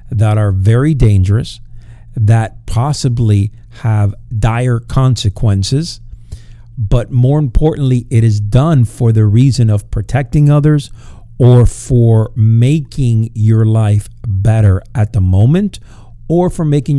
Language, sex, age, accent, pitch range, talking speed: English, male, 50-69, American, 110-130 Hz, 115 wpm